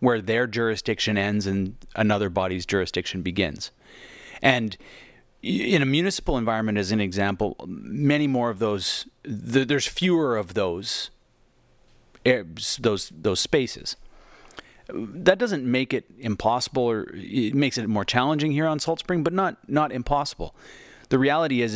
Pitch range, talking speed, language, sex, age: 105-135 Hz, 140 wpm, English, male, 30-49